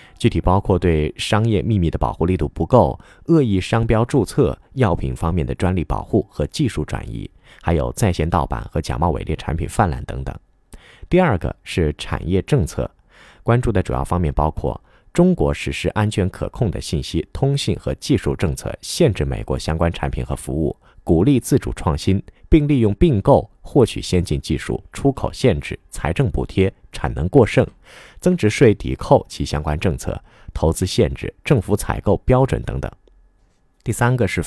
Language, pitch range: Chinese, 75-110 Hz